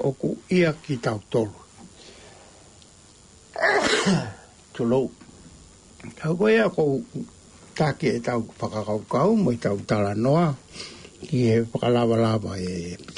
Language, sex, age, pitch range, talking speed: English, male, 60-79, 100-145 Hz, 80 wpm